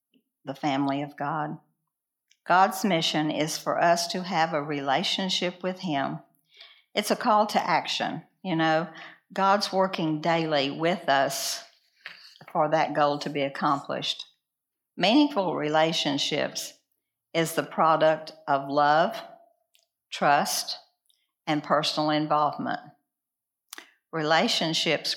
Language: English